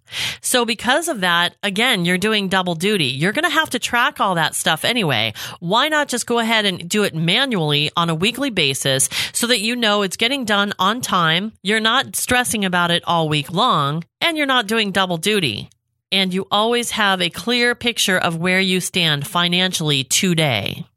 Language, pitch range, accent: English, 160-215 Hz, American